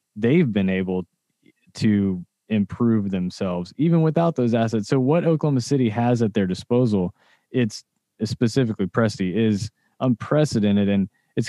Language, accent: English, American